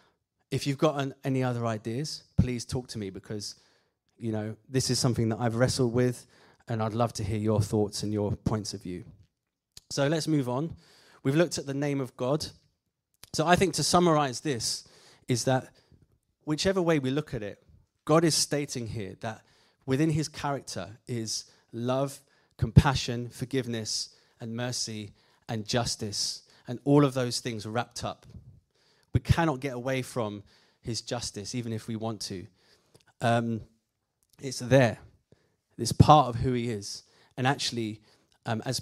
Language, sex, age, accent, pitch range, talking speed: English, male, 30-49, British, 110-140 Hz, 160 wpm